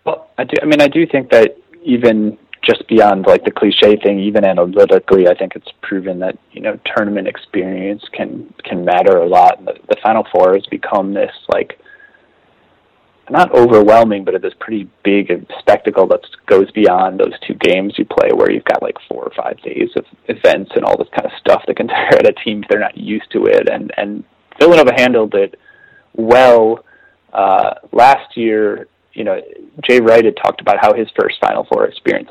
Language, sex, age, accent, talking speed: English, male, 30-49, American, 200 wpm